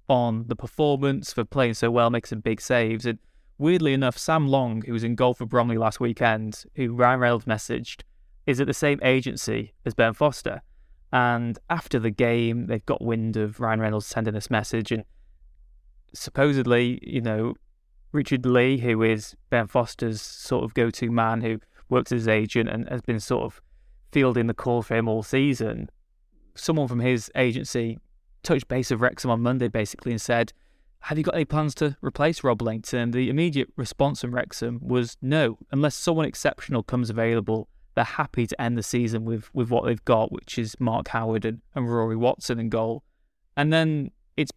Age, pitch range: 20-39, 115-135 Hz